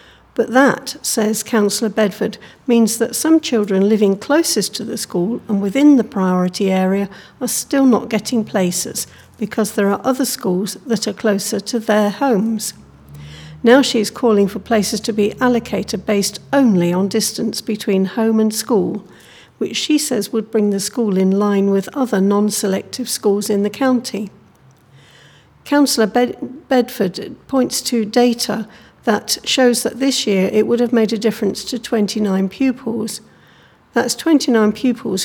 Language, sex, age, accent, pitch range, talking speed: English, female, 60-79, British, 200-235 Hz, 155 wpm